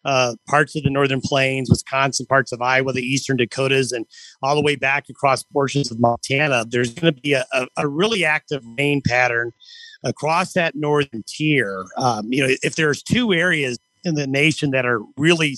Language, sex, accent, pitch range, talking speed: English, male, American, 130-160 Hz, 190 wpm